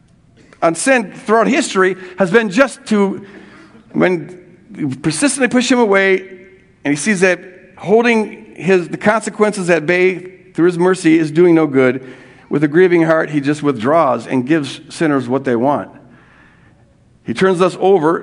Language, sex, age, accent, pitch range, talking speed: English, male, 50-69, American, 155-200 Hz, 160 wpm